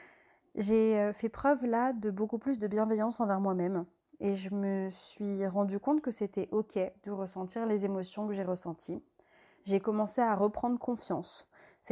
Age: 30-49